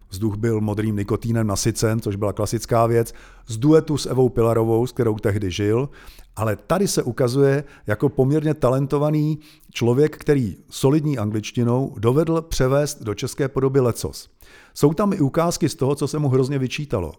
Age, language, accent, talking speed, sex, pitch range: 50-69, Czech, native, 160 wpm, male, 105-140 Hz